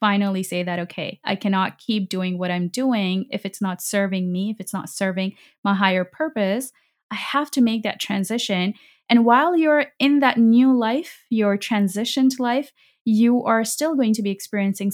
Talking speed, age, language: 185 wpm, 20-39, English